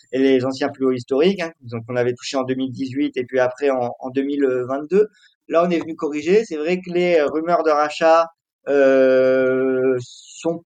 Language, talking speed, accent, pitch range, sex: French, 185 wpm, French, 120-145 Hz, male